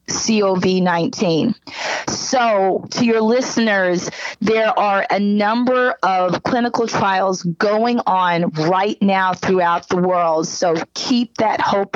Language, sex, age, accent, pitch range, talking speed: English, female, 40-59, American, 185-220 Hz, 115 wpm